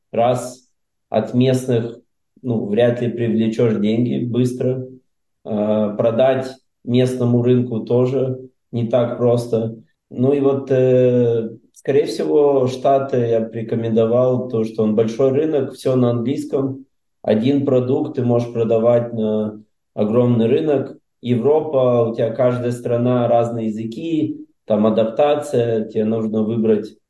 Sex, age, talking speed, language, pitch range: male, 20-39, 120 wpm, Russian, 110-125 Hz